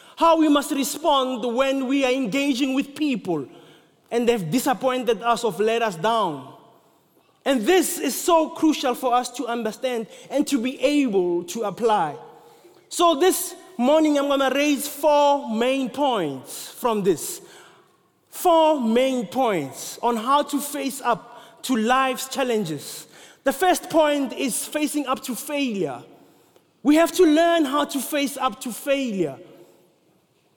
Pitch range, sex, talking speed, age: 235-290 Hz, male, 145 wpm, 30-49